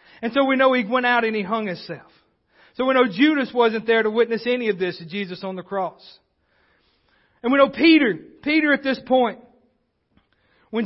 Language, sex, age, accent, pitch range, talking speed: English, male, 40-59, American, 195-235 Hz, 200 wpm